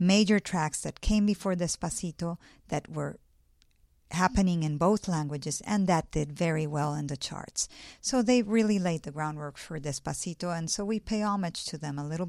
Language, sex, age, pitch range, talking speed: English, female, 50-69, 155-195 Hz, 180 wpm